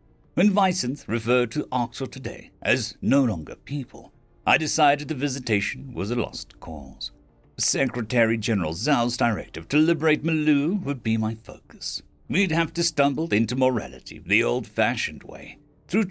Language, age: English, 60-79